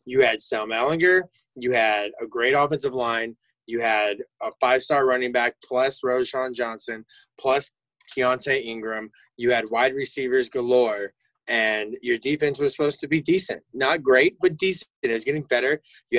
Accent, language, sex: American, English, male